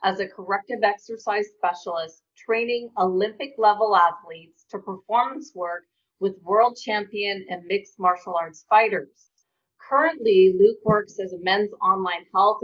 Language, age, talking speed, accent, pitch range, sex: English, 40-59, 135 wpm, American, 180-215 Hz, female